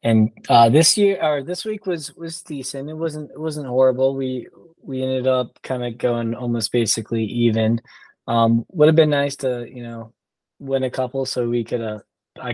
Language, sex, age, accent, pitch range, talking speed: English, male, 20-39, American, 110-130 Hz, 190 wpm